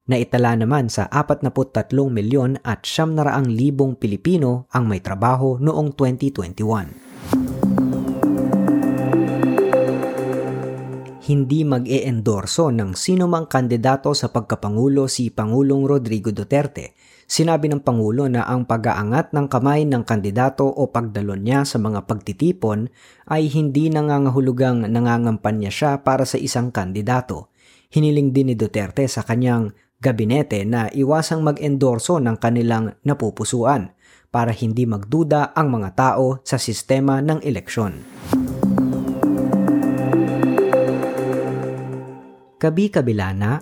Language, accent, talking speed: Filipino, native, 105 wpm